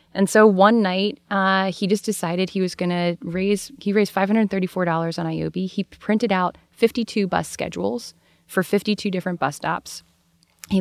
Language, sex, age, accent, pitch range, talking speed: English, female, 20-39, American, 175-220 Hz, 165 wpm